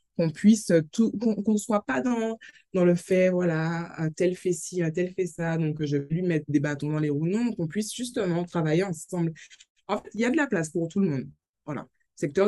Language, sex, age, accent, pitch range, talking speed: French, female, 20-39, French, 145-180 Hz, 210 wpm